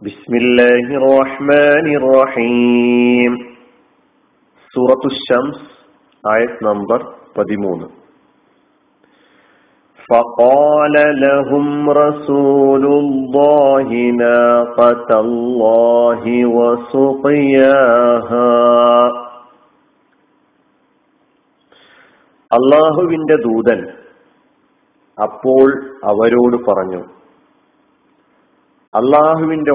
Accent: native